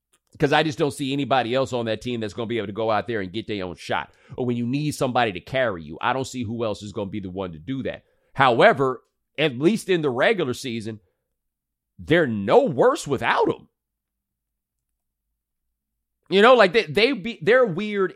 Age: 30-49